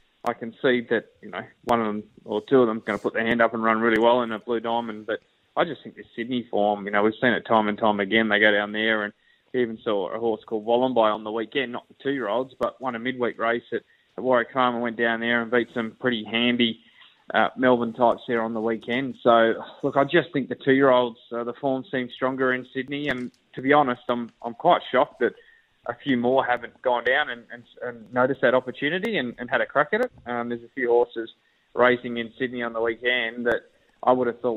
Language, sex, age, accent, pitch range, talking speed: English, male, 20-39, Australian, 115-130 Hz, 245 wpm